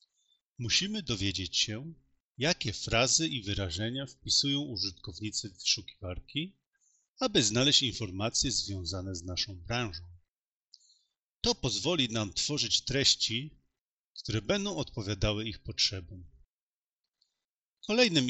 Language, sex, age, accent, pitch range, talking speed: English, male, 40-59, Polish, 95-135 Hz, 95 wpm